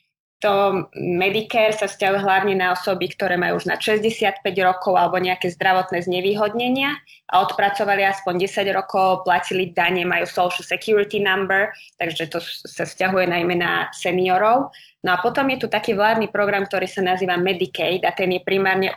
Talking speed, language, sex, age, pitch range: 160 wpm, Slovak, female, 20-39, 180-200 Hz